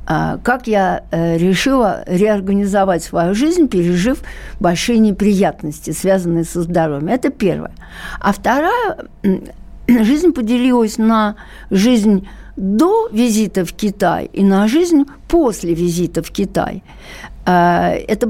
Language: Russian